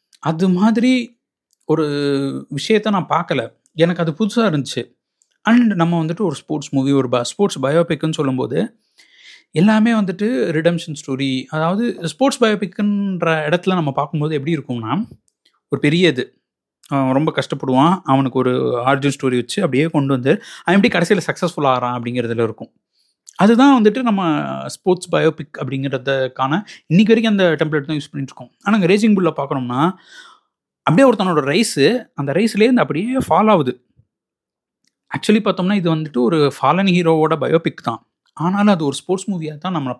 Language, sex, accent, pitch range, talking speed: Tamil, male, native, 140-200 Hz, 145 wpm